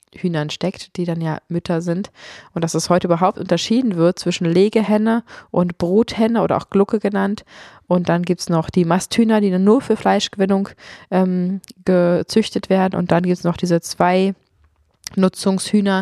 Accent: German